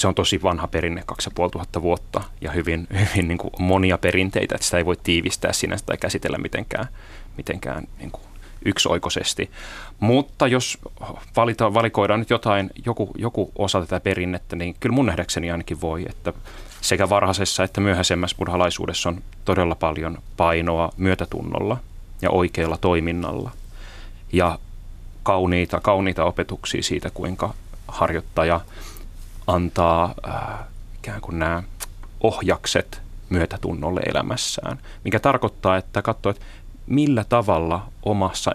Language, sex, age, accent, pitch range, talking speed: Finnish, male, 30-49, native, 85-100 Hz, 115 wpm